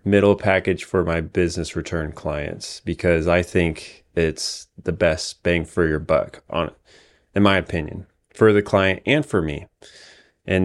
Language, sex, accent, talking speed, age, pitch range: English, male, American, 165 wpm, 20-39, 80-95 Hz